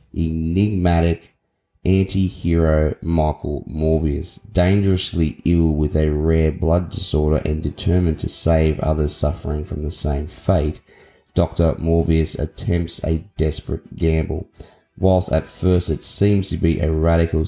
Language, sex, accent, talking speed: English, male, Australian, 125 wpm